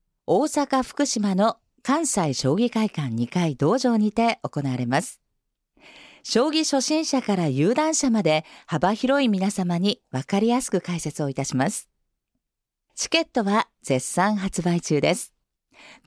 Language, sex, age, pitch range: Japanese, female, 40-59, 155-255 Hz